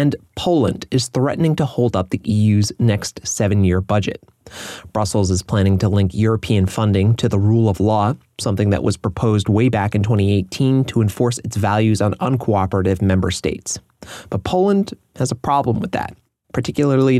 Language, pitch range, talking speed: English, 100-120 Hz, 165 wpm